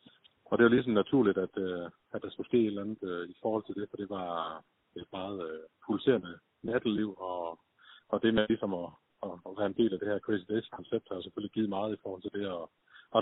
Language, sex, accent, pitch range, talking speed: Danish, male, native, 90-115 Hz, 240 wpm